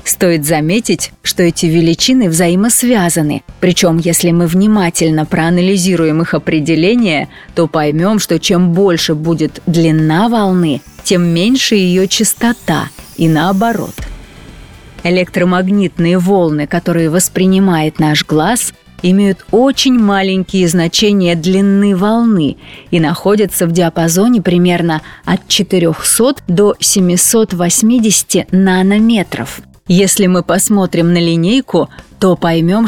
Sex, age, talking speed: female, 30-49, 100 wpm